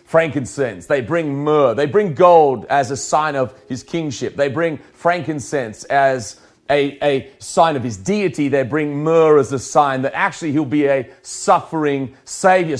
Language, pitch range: English, 140-175 Hz